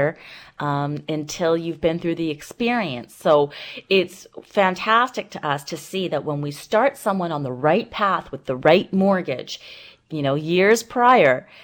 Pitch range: 155-205 Hz